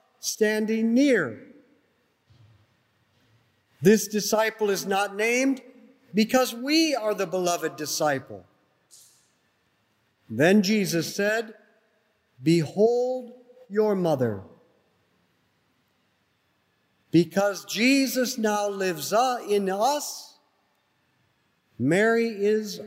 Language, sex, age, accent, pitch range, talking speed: English, male, 50-69, American, 160-240 Hz, 70 wpm